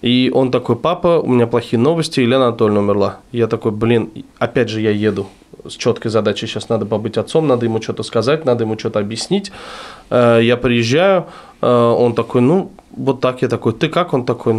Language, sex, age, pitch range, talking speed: Russian, male, 20-39, 120-160 Hz, 190 wpm